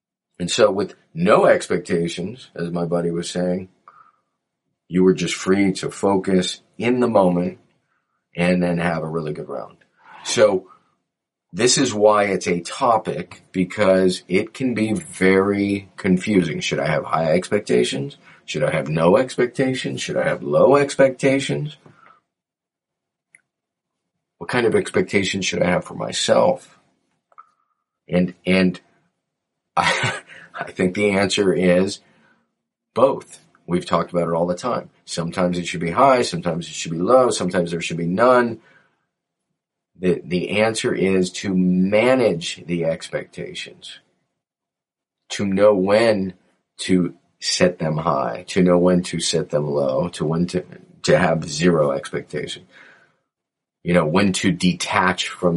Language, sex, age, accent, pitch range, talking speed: English, male, 40-59, American, 90-105 Hz, 140 wpm